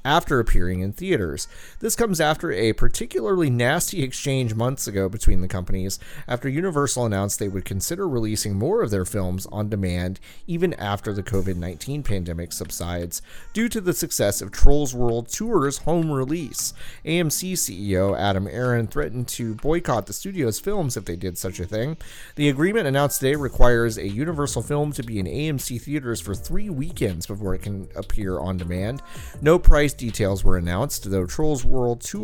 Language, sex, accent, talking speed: English, male, American, 170 wpm